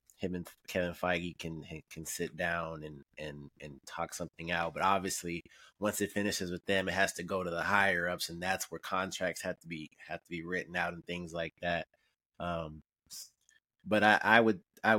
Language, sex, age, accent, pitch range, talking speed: English, male, 20-39, American, 85-120 Hz, 205 wpm